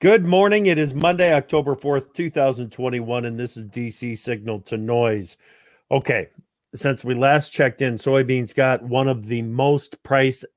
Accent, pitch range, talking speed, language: American, 120-150 Hz, 160 wpm, English